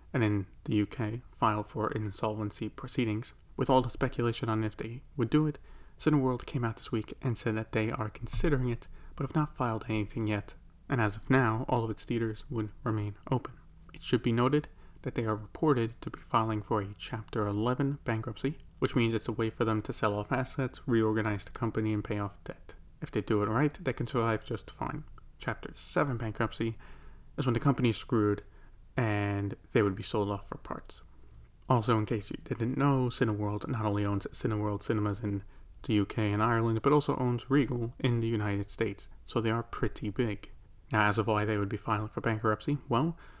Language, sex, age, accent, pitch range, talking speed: English, male, 30-49, American, 105-125 Hz, 205 wpm